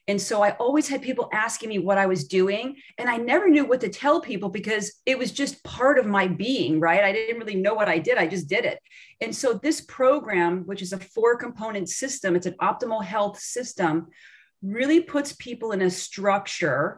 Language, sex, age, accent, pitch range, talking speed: English, female, 40-59, American, 185-235 Hz, 215 wpm